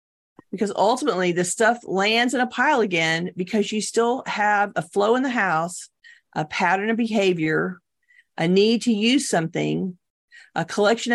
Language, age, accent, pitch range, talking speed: English, 40-59, American, 185-235 Hz, 155 wpm